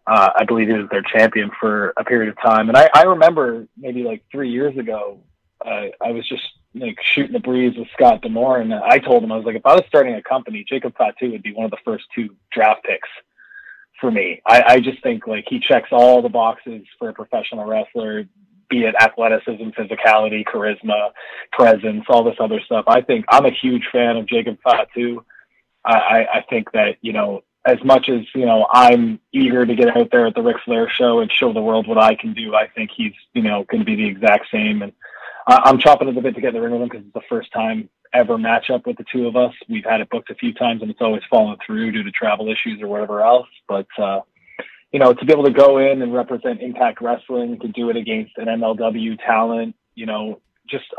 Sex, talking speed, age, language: male, 230 wpm, 20-39, English